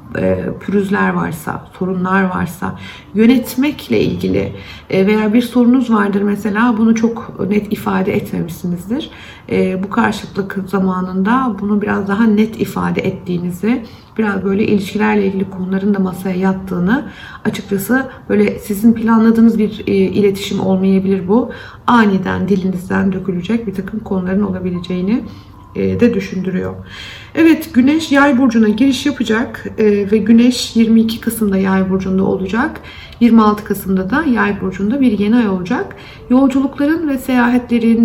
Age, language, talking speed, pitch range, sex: 60-79, Turkish, 120 wpm, 190-235 Hz, female